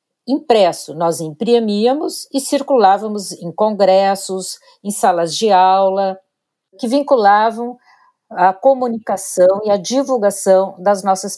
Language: English